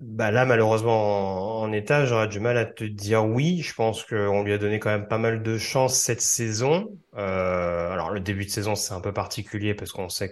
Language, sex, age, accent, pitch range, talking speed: French, male, 30-49, French, 105-130 Hz, 235 wpm